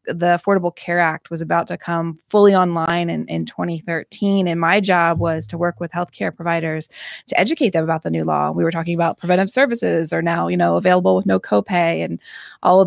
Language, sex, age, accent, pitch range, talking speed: English, female, 20-39, American, 165-190 Hz, 215 wpm